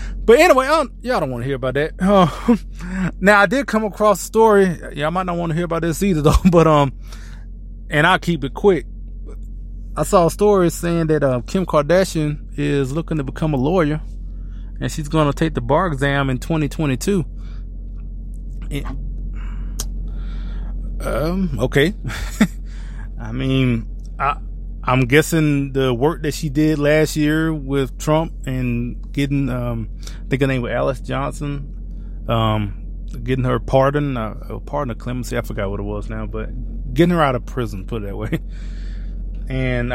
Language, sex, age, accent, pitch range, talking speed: English, male, 20-39, American, 110-155 Hz, 165 wpm